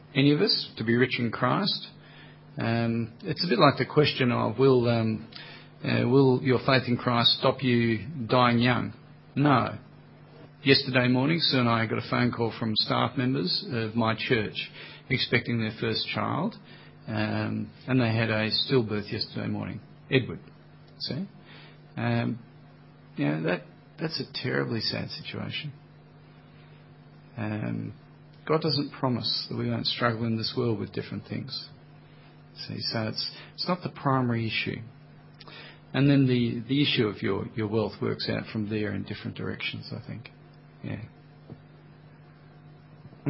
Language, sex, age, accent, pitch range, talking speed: English, male, 40-59, Australian, 115-145 Hz, 150 wpm